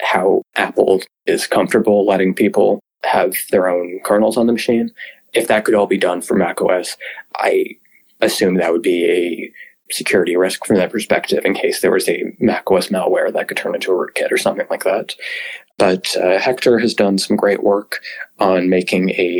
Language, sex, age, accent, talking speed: English, male, 20-39, American, 185 wpm